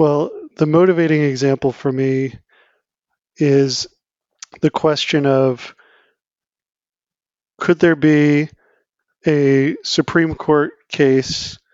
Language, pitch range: English, 130-155 Hz